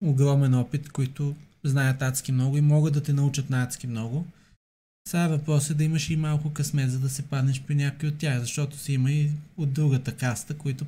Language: Bulgarian